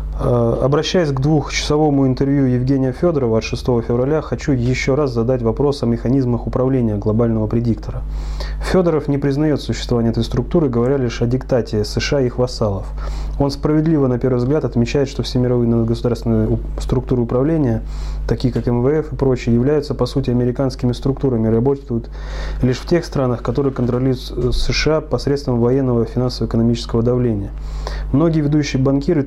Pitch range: 115-135 Hz